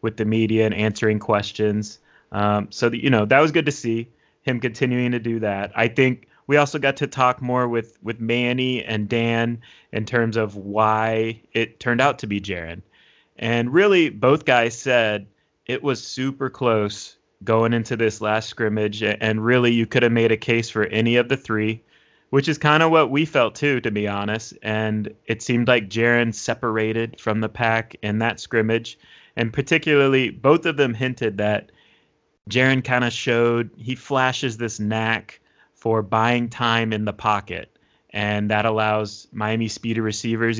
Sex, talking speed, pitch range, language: male, 175 wpm, 110-120 Hz, English